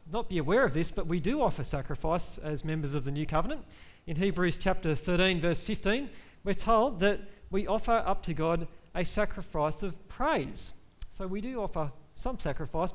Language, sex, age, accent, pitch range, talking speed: English, male, 40-59, Australian, 160-200 Hz, 185 wpm